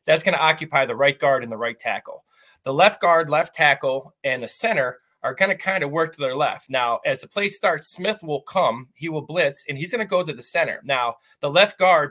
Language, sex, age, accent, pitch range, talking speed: English, male, 30-49, American, 140-180 Hz, 255 wpm